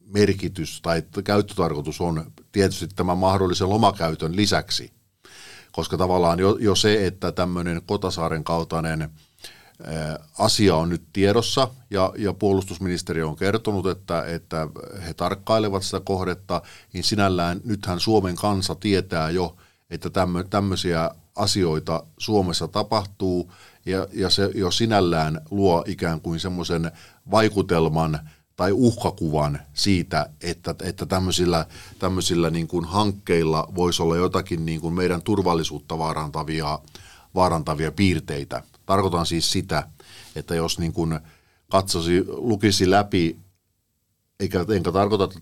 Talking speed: 120 wpm